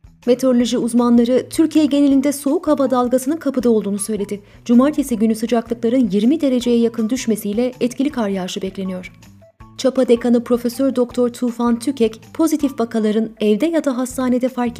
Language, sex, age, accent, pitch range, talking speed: Turkish, female, 30-49, native, 210-270 Hz, 140 wpm